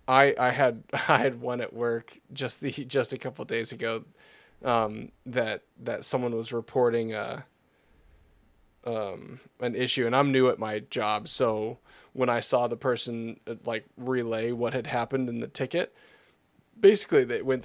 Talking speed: 165 wpm